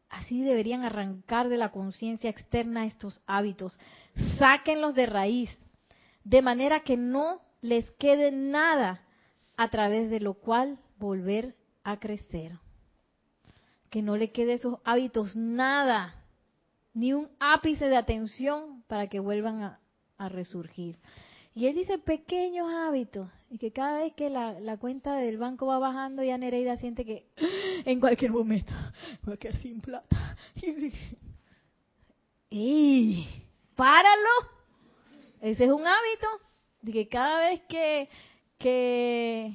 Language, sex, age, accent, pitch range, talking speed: Spanish, female, 30-49, American, 220-275 Hz, 125 wpm